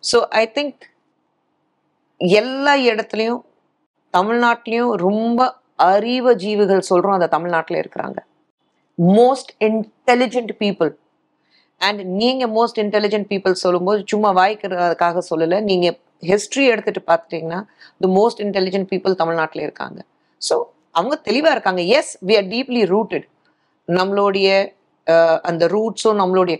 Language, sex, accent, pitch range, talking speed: Tamil, female, native, 185-240 Hz, 105 wpm